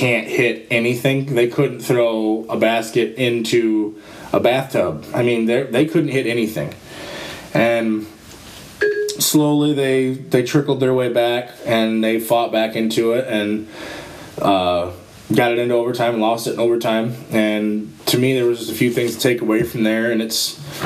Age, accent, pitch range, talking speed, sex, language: 20-39, American, 110-125 Hz, 165 wpm, male, English